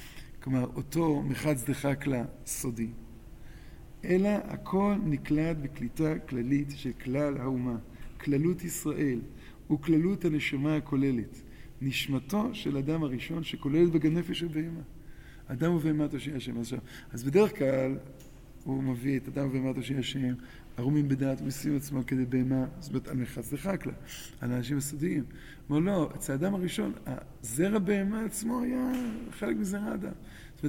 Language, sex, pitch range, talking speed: Hebrew, male, 130-170 Hz, 135 wpm